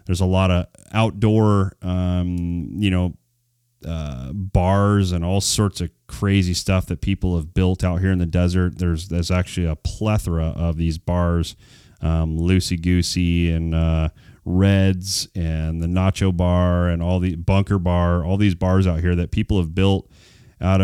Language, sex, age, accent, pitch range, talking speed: English, male, 30-49, American, 85-100 Hz, 165 wpm